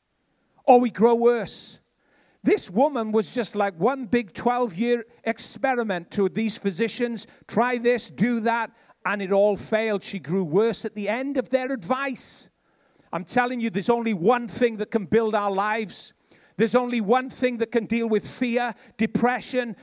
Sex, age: male, 50-69